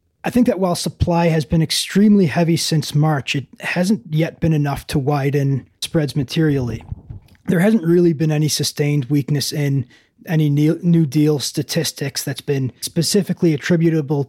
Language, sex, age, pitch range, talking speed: English, male, 20-39, 140-170 Hz, 150 wpm